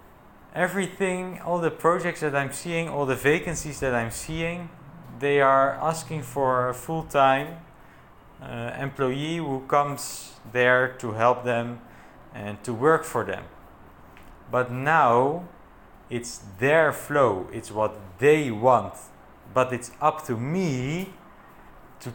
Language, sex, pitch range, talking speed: English, male, 115-150 Hz, 125 wpm